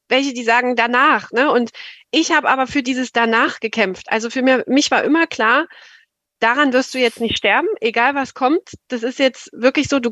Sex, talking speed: female, 210 wpm